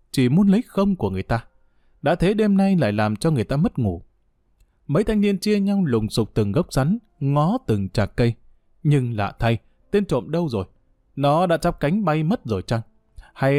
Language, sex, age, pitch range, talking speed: Vietnamese, male, 20-39, 110-175 Hz, 210 wpm